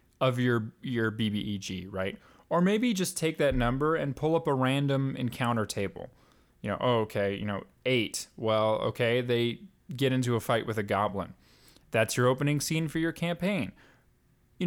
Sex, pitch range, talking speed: male, 105-145 Hz, 170 wpm